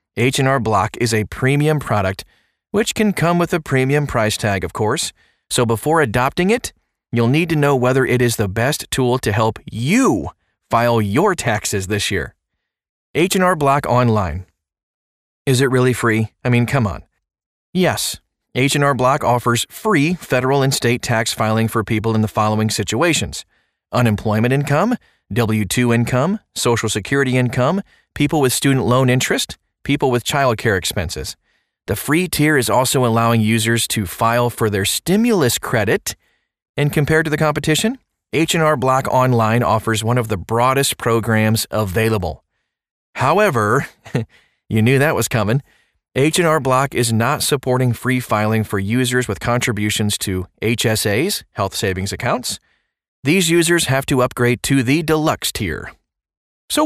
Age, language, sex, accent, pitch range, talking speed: 30-49, English, male, American, 110-140 Hz, 150 wpm